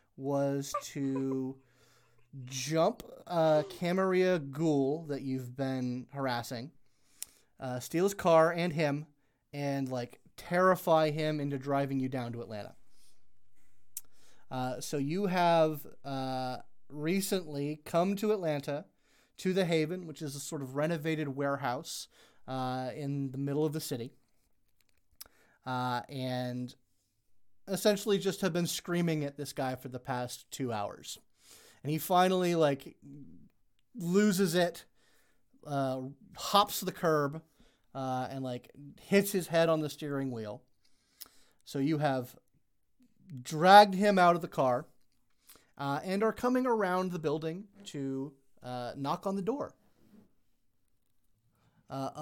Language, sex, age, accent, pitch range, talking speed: English, male, 30-49, American, 125-170 Hz, 125 wpm